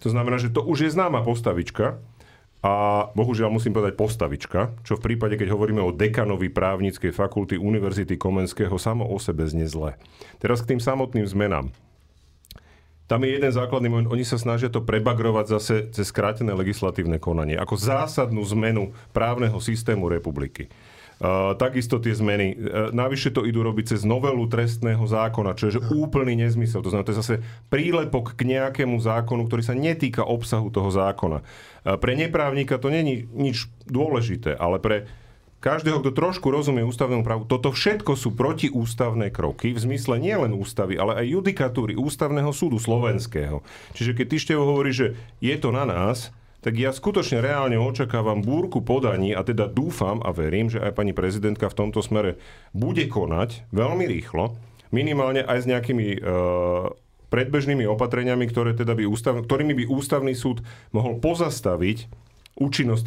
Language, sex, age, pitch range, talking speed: Slovak, male, 40-59, 105-130 Hz, 155 wpm